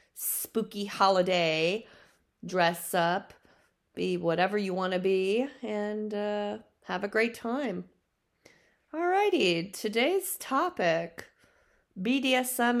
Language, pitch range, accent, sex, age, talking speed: English, 170-225 Hz, American, female, 30-49, 95 wpm